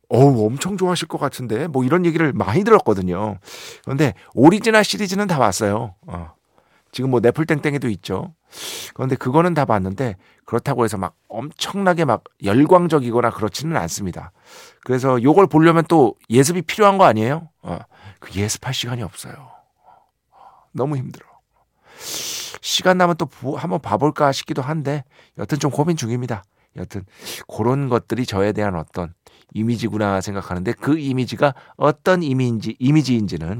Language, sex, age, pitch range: Korean, male, 50-69, 110-160 Hz